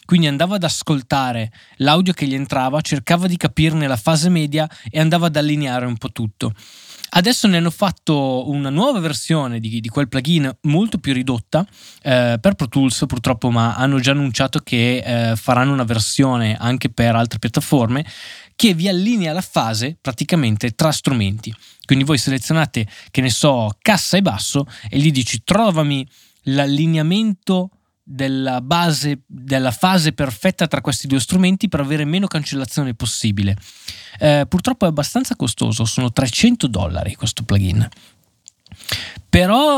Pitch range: 120-160 Hz